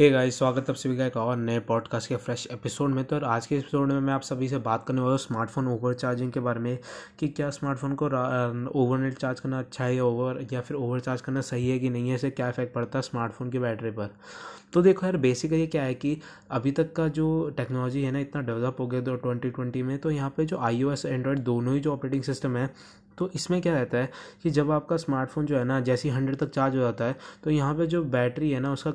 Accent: native